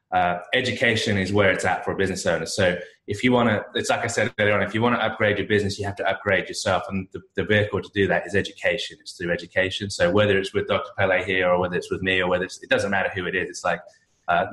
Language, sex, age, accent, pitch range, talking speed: English, male, 20-39, British, 95-105 Hz, 285 wpm